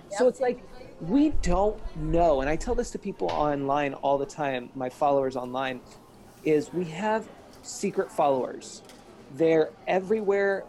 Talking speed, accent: 145 wpm, American